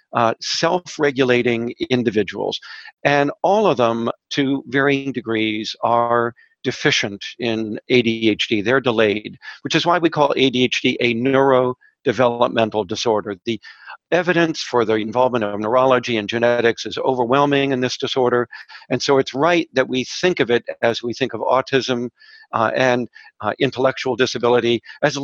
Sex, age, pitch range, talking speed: male, 50-69, 120-145 Hz, 140 wpm